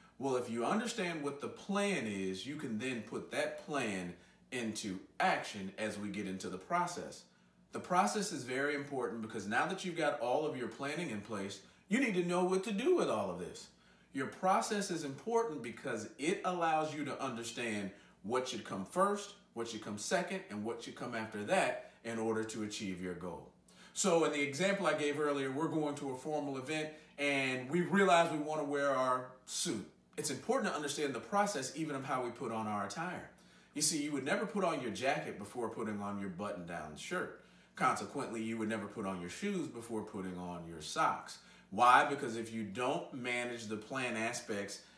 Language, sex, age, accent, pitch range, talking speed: English, male, 40-59, American, 105-160 Hz, 205 wpm